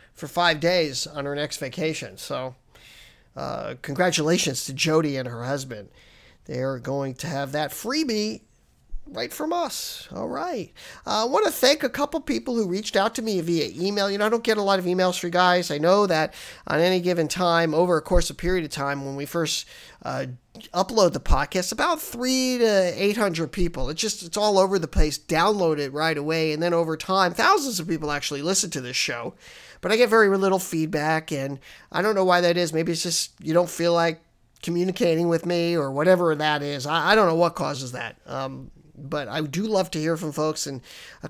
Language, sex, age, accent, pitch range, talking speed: English, male, 50-69, American, 150-195 Hz, 215 wpm